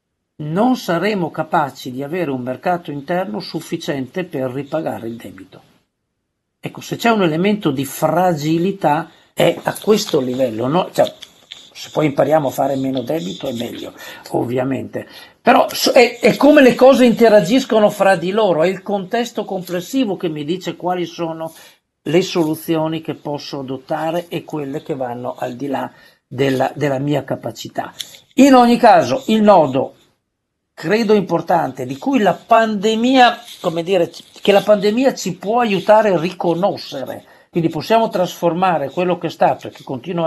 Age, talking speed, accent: 50-69, 150 wpm, native